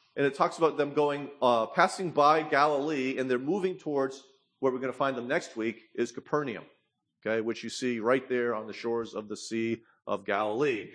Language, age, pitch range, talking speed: English, 40-59, 135-205 Hz, 210 wpm